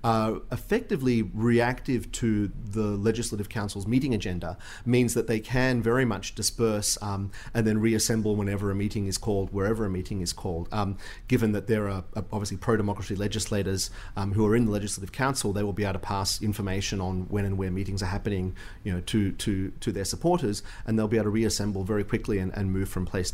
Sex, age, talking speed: male, 40-59, 205 wpm